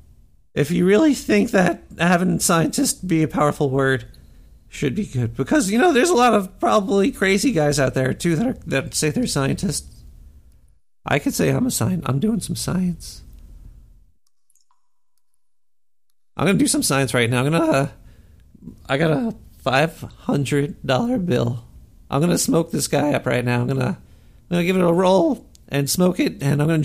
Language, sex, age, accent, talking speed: English, male, 50-69, American, 190 wpm